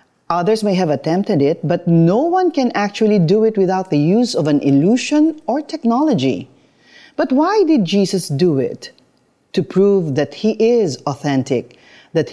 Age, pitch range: 40-59, 150-250 Hz